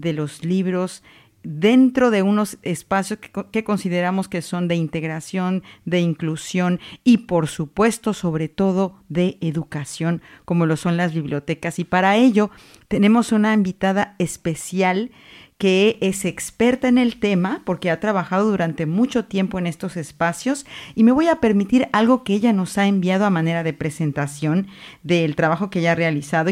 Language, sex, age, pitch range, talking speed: Spanish, female, 50-69, 165-205 Hz, 160 wpm